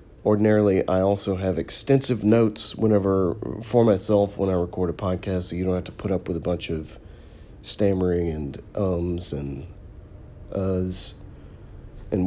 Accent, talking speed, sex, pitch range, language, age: American, 150 wpm, male, 90-110 Hz, English, 40-59